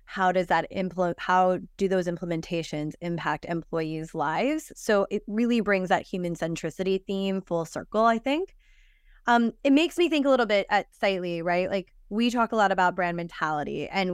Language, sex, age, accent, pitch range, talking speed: English, female, 20-39, American, 180-230 Hz, 185 wpm